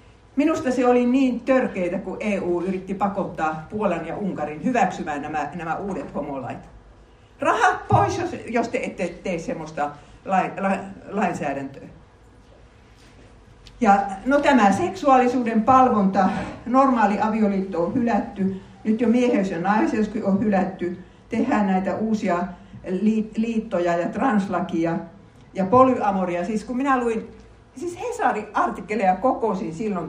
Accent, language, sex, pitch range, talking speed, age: native, Finnish, female, 165-240 Hz, 120 wpm, 60-79